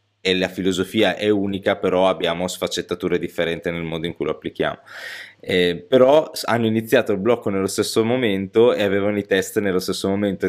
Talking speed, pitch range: 175 wpm, 90-105 Hz